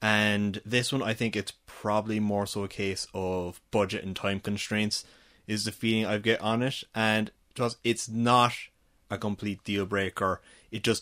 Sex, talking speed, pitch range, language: male, 175 wpm, 100-115 Hz, English